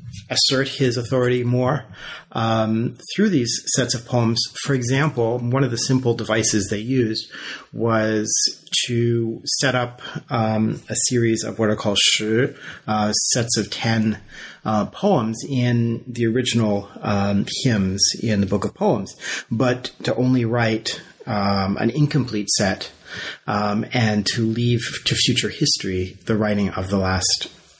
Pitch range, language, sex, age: 105-125 Hz, English, male, 40-59